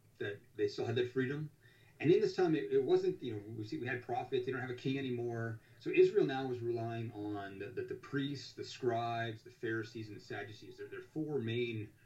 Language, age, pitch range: English, 30-49, 115-150 Hz